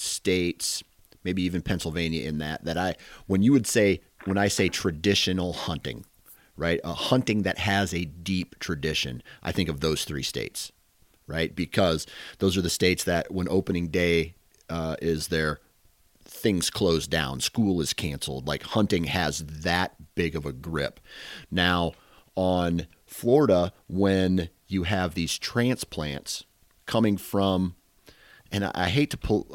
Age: 40-59